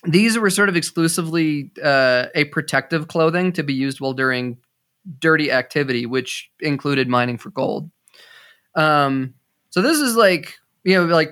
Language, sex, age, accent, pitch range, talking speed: English, male, 20-39, American, 130-165 Hz, 155 wpm